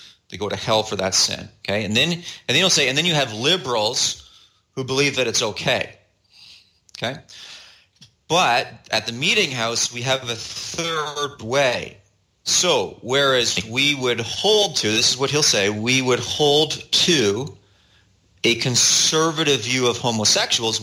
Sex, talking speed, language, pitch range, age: male, 160 wpm, English, 110-150 Hz, 30-49